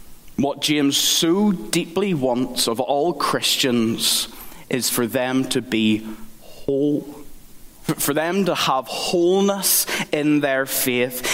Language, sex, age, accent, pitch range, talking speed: English, male, 20-39, British, 130-165 Hz, 115 wpm